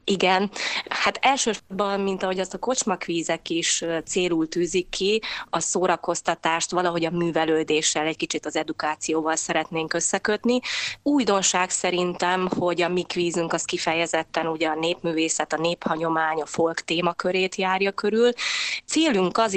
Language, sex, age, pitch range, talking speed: Hungarian, female, 20-39, 160-195 Hz, 130 wpm